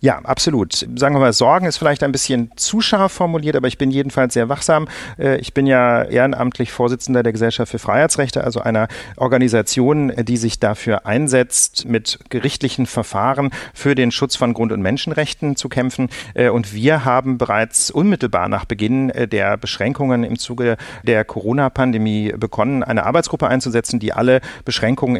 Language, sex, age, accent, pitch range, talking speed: German, male, 40-59, German, 115-135 Hz, 160 wpm